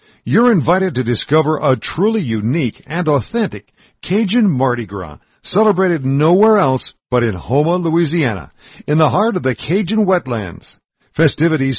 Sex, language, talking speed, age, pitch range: male, English, 135 wpm, 60-79, 110-175 Hz